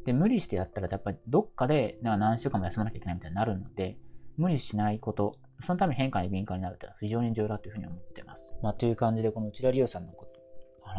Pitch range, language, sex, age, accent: 100-140 Hz, Japanese, male, 20-39, native